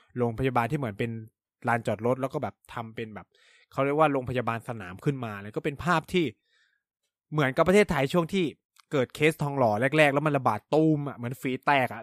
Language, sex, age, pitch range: Thai, male, 20-39, 115-155 Hz